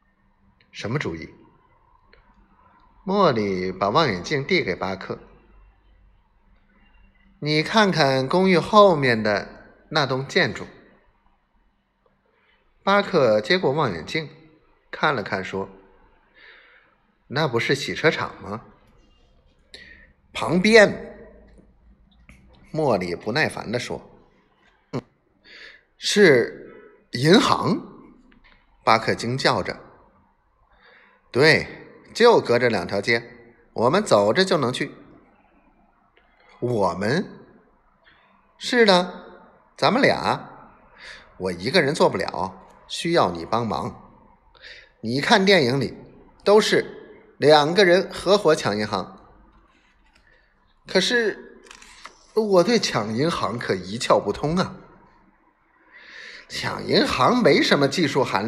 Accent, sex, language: native, male, Chinese